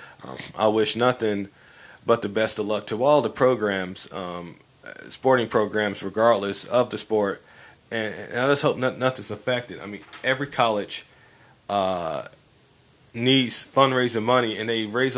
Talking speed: 150 wpm